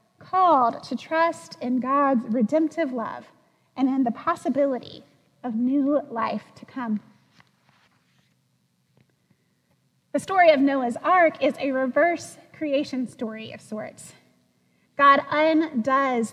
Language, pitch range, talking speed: English, 235-300 Hz, 110 wpm